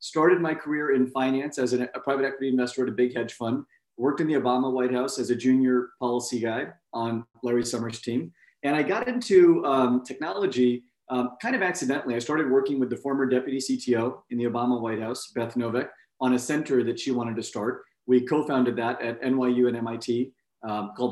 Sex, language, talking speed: male, English, 205 wpm